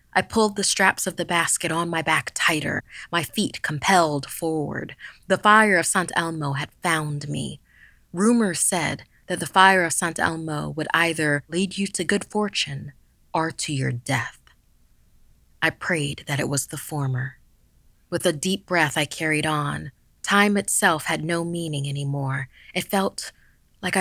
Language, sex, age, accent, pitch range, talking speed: English, female, 30-49, American, 145-185 Hz, 160 wpm